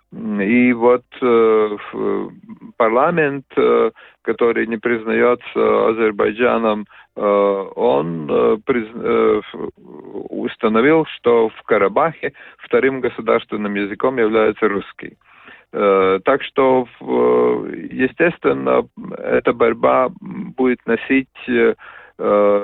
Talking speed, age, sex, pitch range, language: 65 wpm, 40-59, male, 100-130 Hz, Russian